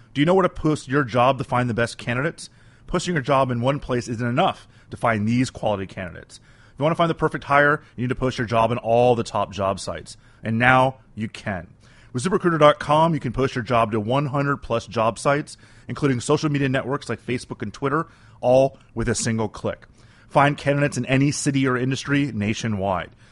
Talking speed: 210 wpm